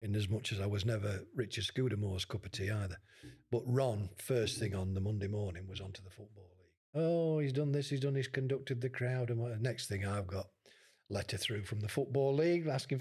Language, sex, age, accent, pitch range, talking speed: English, male, 50-69, British, 105-135 Hz, 220 wpm